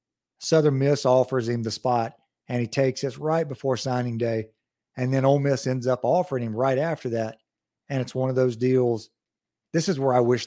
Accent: American